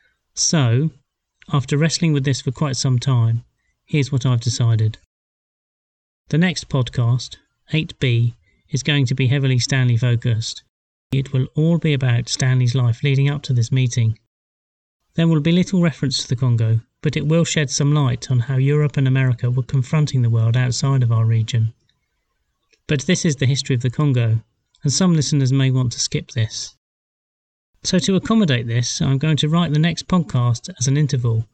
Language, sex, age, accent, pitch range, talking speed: English, male, 30-49, British, 120-145 Hz, 175 wpm